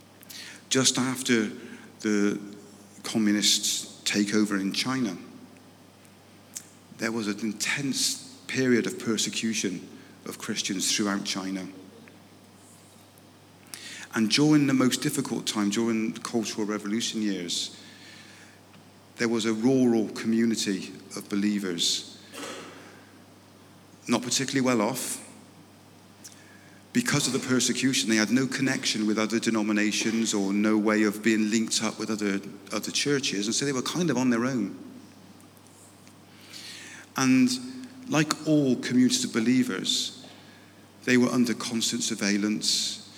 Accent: British